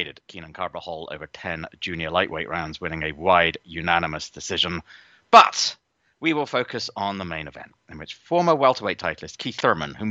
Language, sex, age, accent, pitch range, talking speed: English, male, 30-49, British, 80-120 Hz, 170 wpm